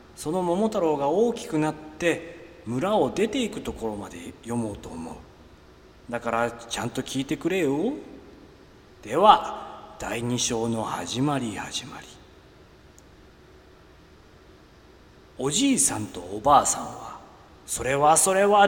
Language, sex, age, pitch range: Japanese, male, 40-59, 120-200 Hz